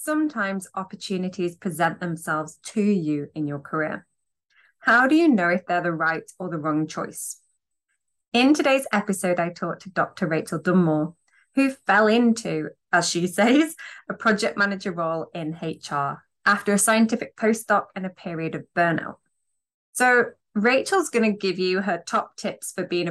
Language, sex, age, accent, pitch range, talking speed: English, female, 20-39, British, 175-240 Hz, 160 wpm